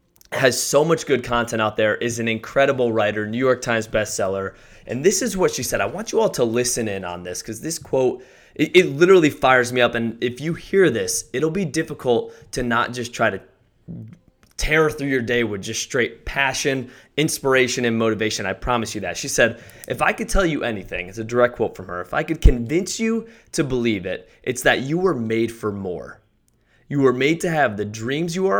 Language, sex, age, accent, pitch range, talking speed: English, male, 20-39, American, 115-145 Hz, 220 wpm